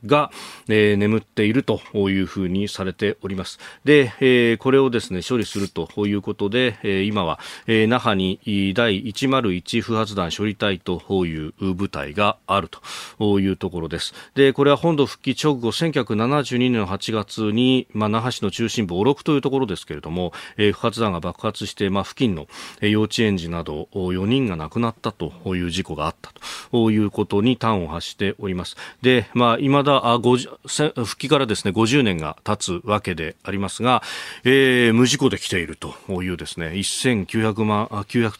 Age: 40-59